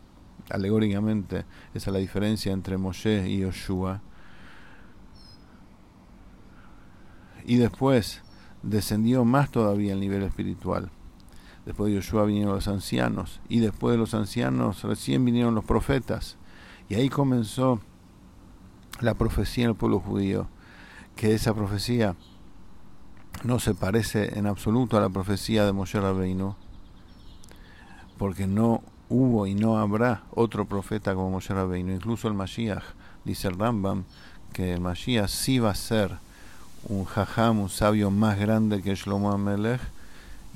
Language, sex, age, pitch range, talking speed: English, male, 50-69, 95-115 Hz, 130 wpm